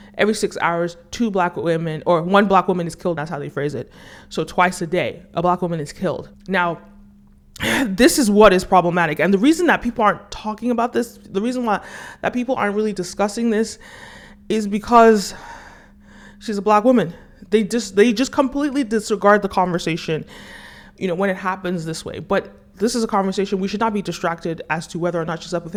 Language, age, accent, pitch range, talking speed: English, 30-49, American, 180-220 Hz, 205 wpm